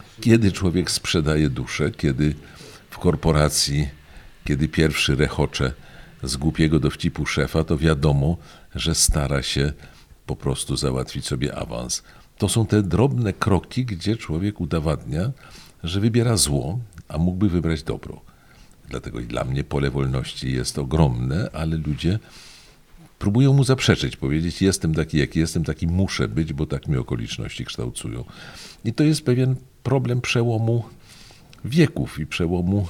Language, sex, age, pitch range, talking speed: Polish, male, 50-69, 70-100 Hz, 135 wpm